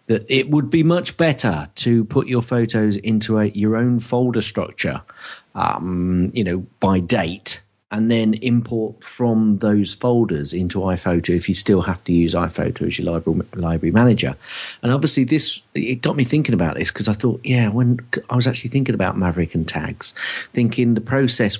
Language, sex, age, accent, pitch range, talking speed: English, male, 40-59, British, 90-120 Hz, 180 wpm